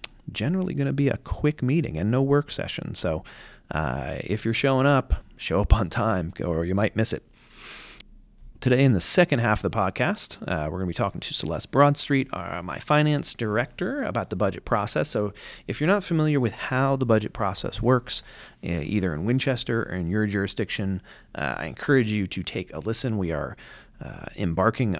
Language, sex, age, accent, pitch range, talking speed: English, male, 30-49, American, 95-130 Hz, 195 wpm